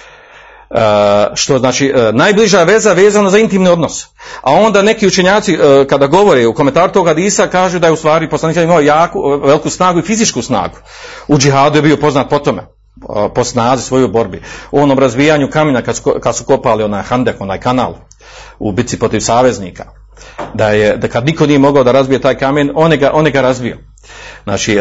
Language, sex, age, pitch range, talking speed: Croatian, male, 40-59, 135-180 Hz, 200 wpm